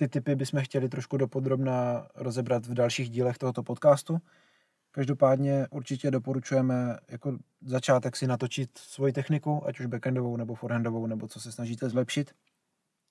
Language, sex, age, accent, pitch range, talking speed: Czech, male, 20-39, native, 120-140 Hz, 140 wpm